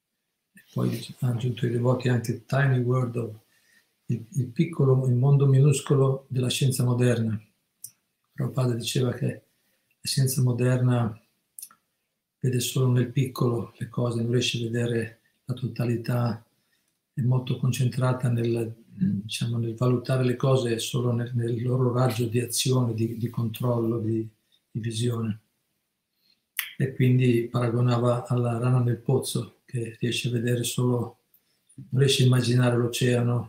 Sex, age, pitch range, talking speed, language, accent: male, 50-69, 120-130 Hz, 135 wpm, Italian, native